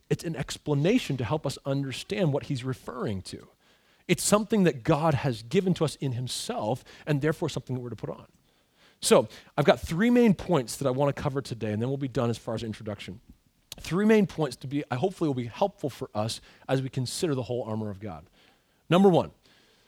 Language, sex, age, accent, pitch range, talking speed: English, male, 40-59, American, 125-180 Hz, 215 wpm